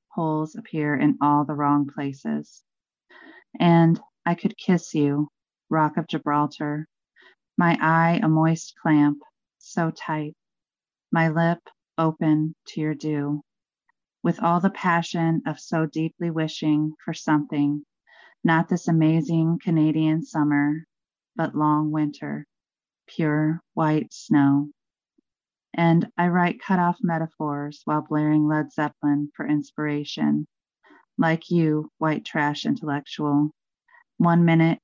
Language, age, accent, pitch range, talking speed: English, 30-49, American, 150-170 Hz, 115 wpm